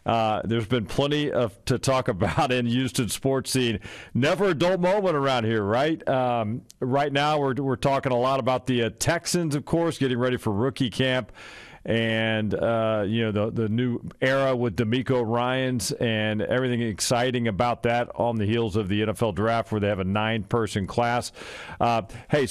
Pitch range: 110-135 Hz